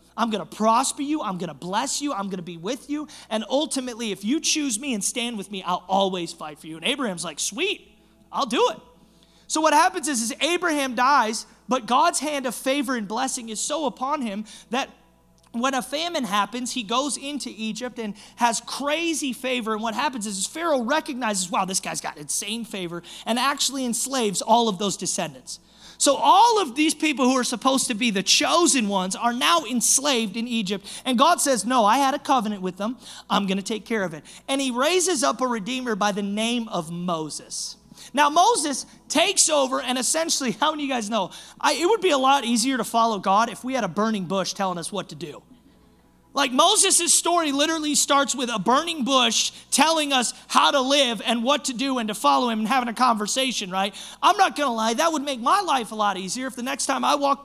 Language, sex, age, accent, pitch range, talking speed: English, male, 30-49, American, 215-285 Hz, 220 wpm